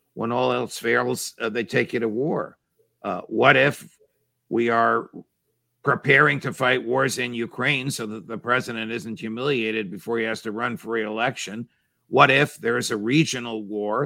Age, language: 50-69, English